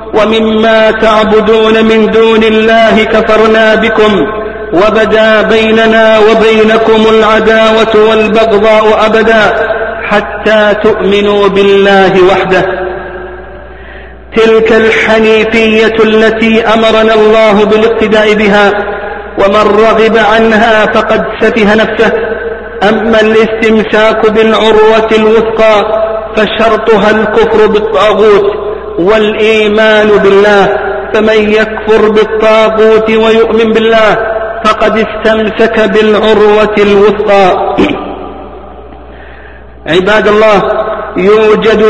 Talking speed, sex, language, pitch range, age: 75 wpm, male, Arabic, 210-220 Hz, 50-69